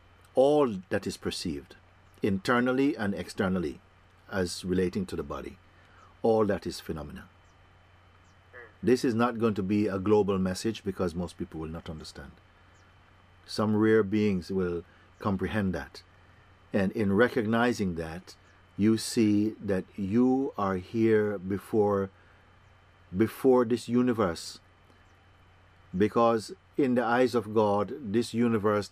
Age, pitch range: 50-69, 90-110 Hz